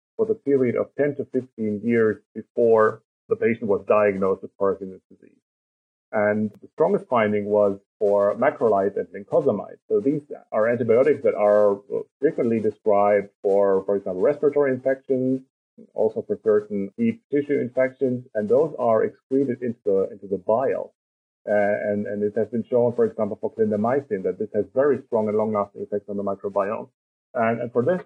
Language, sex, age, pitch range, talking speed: English, male, 40-59, 105-130 Hz, 165 wpm